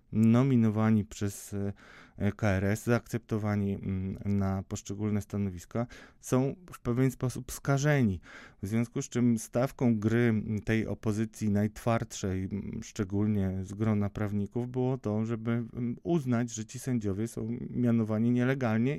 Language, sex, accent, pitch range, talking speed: Polish, male, native, 115-145 Hz, 110 wpm